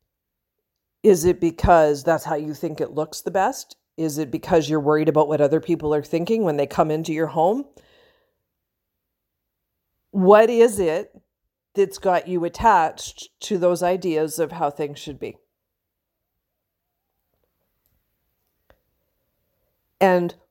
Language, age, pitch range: English, 50-69, 155-230 Hz